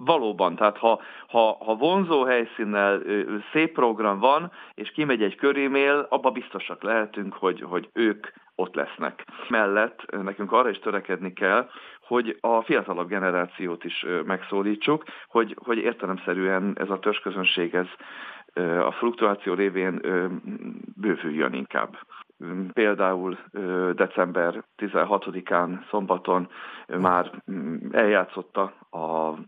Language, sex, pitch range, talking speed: Hungarian, male, 95-125 Hz, 110 wpm